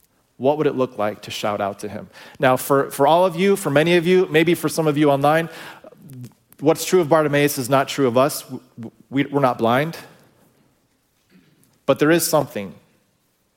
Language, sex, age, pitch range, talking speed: English, male, 40-59, 120-155 Hz, 185 wpm